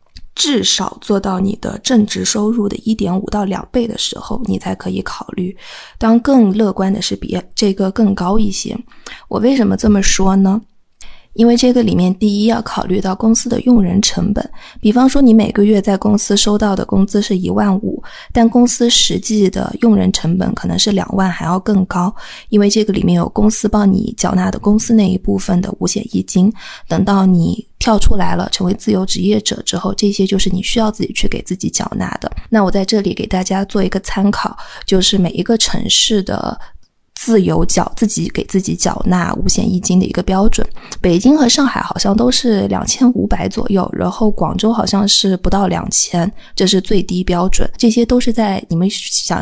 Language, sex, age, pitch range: Chinese, female, 20-39, 190-220 Hz